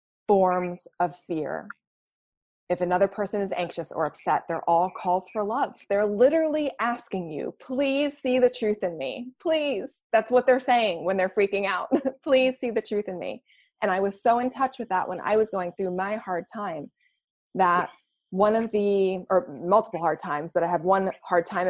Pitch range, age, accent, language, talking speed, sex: 180-240 Hz, 20-39, American, English, 195 wpm, female